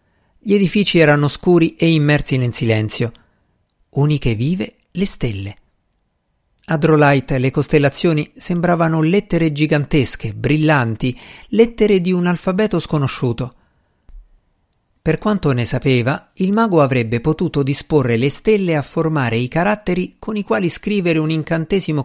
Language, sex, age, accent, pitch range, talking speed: Italian, male, 50-69, native, 125-170 Hz, 120 wpm